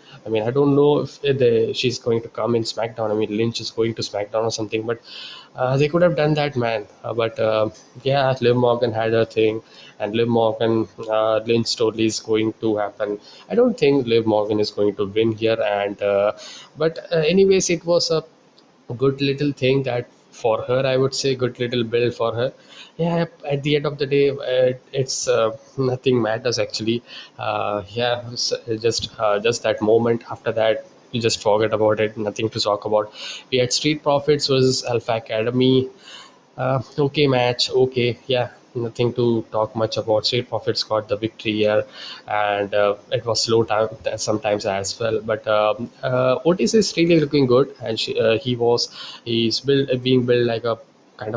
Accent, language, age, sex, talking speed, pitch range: Indian, English, 20-39, male, 190 wpm, 110-135 Hz